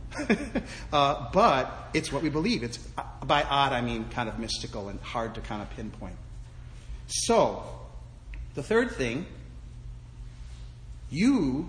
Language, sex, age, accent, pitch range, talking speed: English, male, 40-59, American, 115-160 Hz, 145 wpm